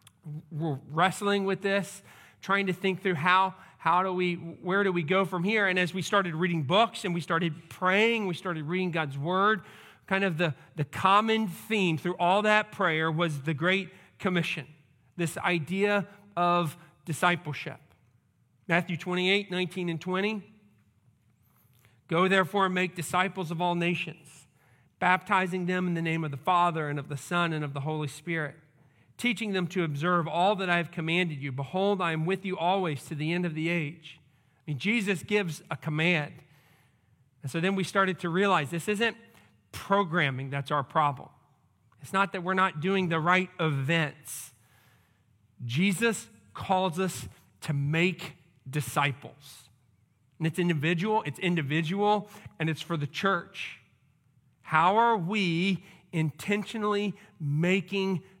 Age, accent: 40-59, American